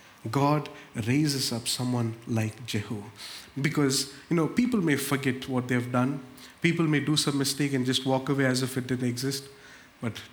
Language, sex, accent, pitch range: English, male, Indian, 120-145 Hz